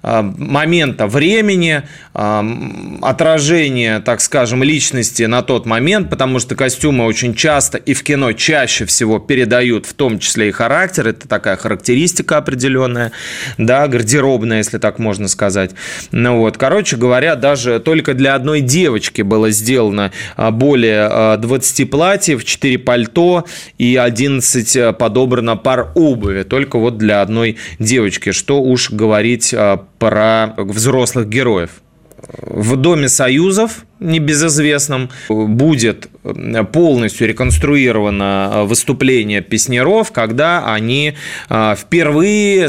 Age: 20-39